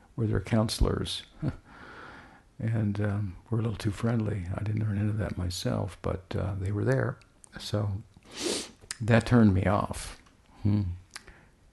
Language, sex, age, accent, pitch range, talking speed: English, male, 60-79, American, 95-110 Hz, 140 wpm